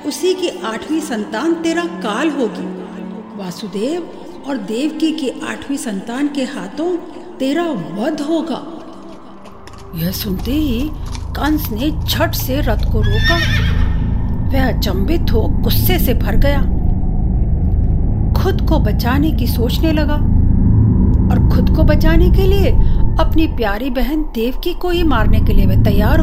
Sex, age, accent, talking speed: female, 50-69, native, 125 wpm